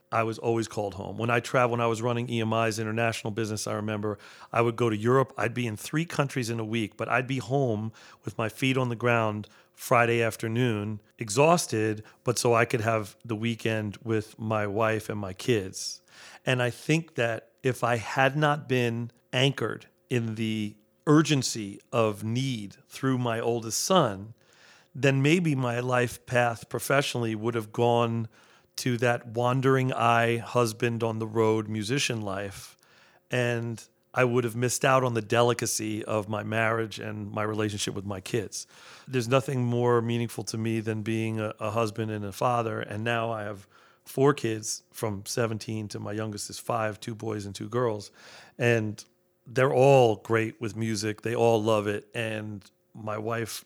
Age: 40-59